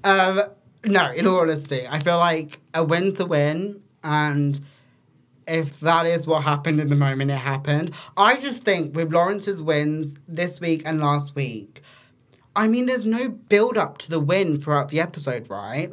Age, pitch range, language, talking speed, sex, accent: 20-39, 145-180 Hz, English, 175 wpm, male, British